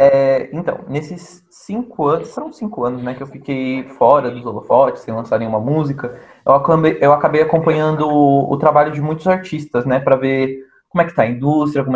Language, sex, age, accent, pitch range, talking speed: Portuguese, male, 20-39, Brazilian, 130-170 Hz, 200 wpm